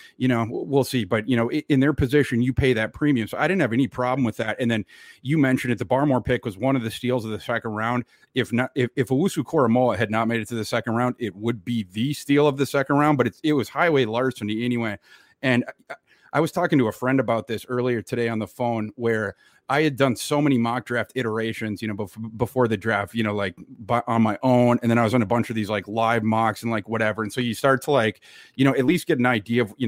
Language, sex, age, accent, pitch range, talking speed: English, male, 30-49, American, 110-130 Hz, 265 wpm